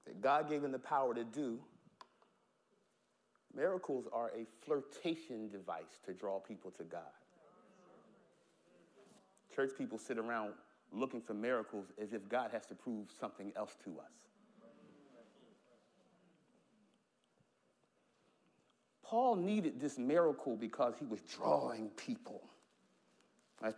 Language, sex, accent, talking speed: English, male, American, 115 wpm